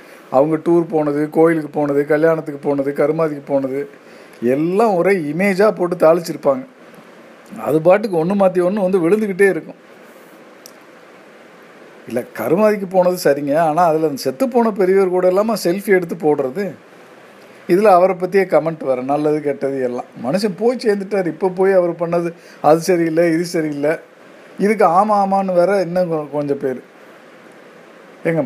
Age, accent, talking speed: 50-69, native, 135 wpm